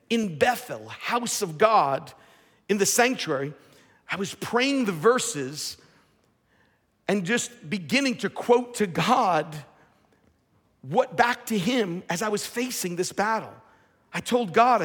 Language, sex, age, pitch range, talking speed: English, male, 50-69, 185-245 Hz, 135 wpm